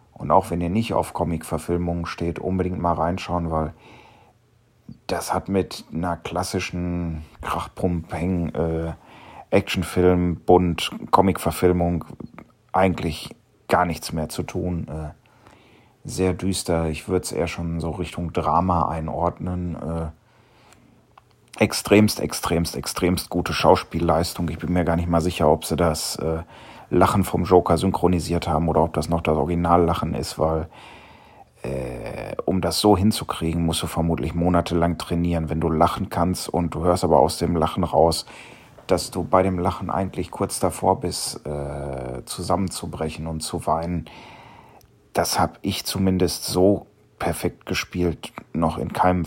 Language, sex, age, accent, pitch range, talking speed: German, male, 40-59, German, 80-90 Hz, 140 wpm